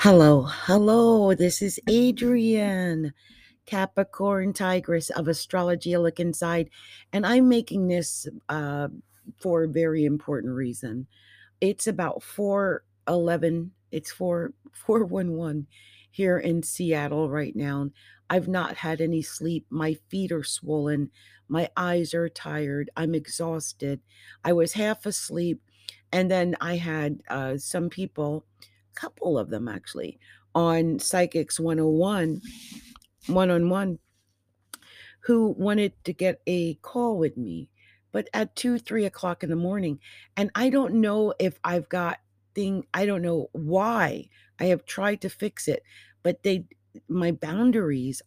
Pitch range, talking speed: 145-190 Hz, 130 wpm